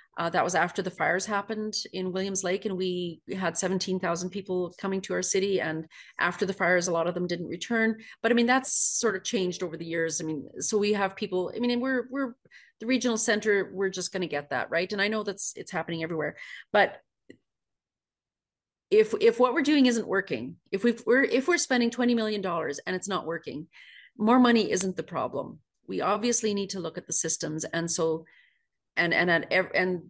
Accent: Canadian